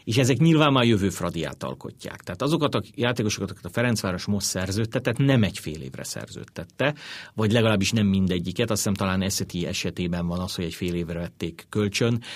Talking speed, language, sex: 185 wpm, Hungarian, male